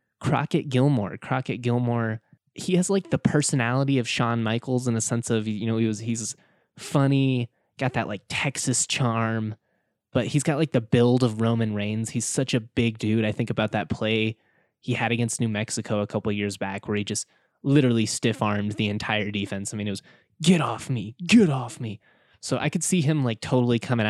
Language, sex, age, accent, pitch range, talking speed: English, male, 20-39, American, 110-135 Hz, 200 wpm